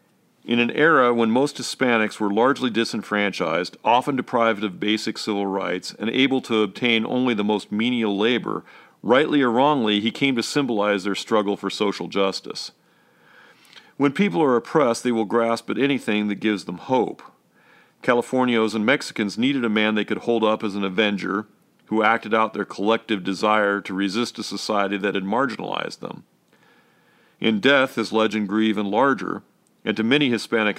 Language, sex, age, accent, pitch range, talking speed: English, male, 40-59, American, 105-125 Hz, 170 wpm